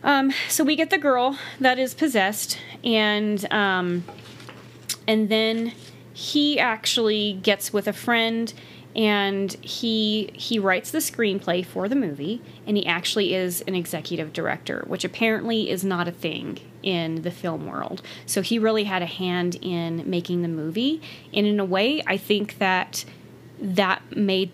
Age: 20-39